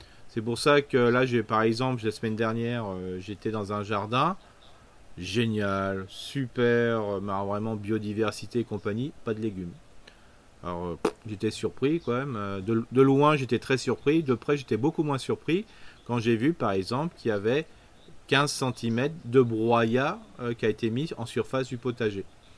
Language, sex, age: French, male, 40-59